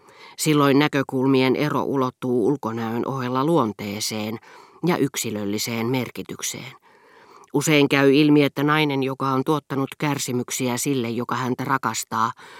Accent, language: native, Finnish